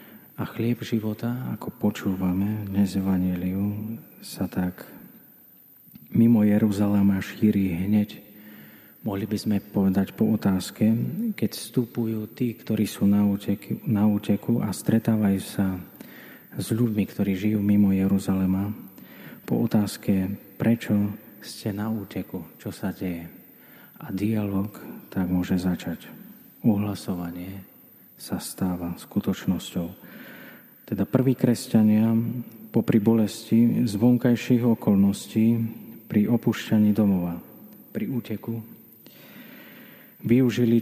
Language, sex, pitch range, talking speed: Slovak, male, 100-115 Hz, 95 wpm